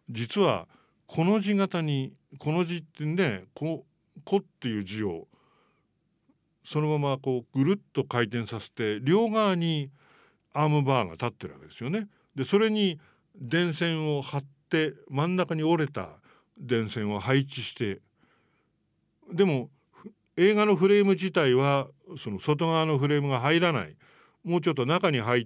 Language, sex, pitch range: English, male, 120-175 Hz